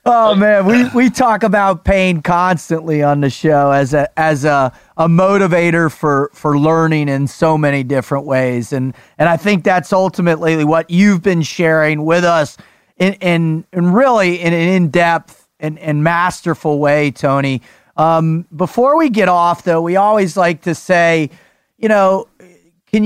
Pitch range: 155-200 Hz